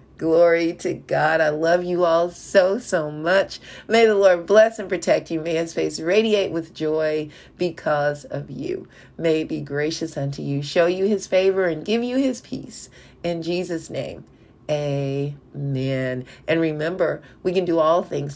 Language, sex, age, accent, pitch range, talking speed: English, female, 40-59, American, 145-190 Hz, 170 wpm